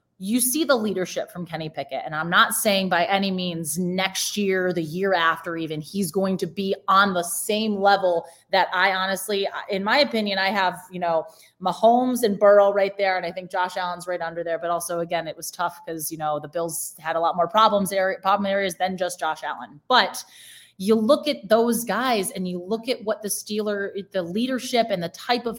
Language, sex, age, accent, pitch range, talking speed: English, female, 20-39, American, 185-250 Hz, 215 wpm